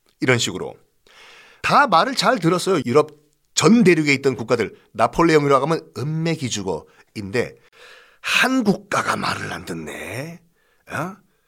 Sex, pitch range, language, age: male, 135-215 Hz, Korean, 50-69